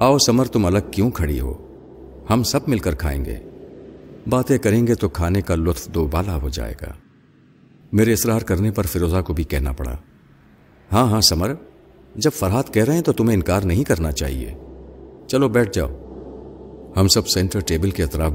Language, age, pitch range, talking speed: Urdu, 50-69, 75-115 Hz, 185 wpm